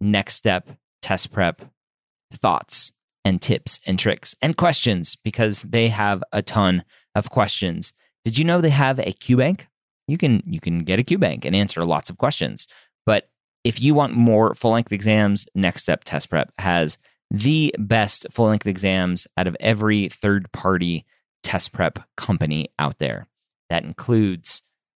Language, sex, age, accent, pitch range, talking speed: English, male, 30-49, American, 90-120 Hz, 155 wpm